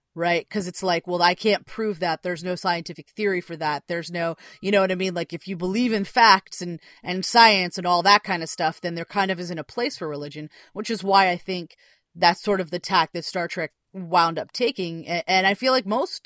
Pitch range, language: 160-195 Hz, English